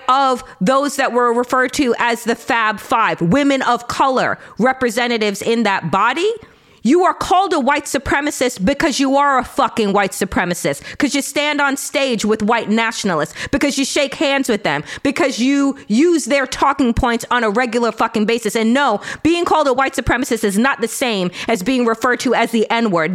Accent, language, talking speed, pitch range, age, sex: American, English, 190 wpm, 225-275 Hz, 30-49, female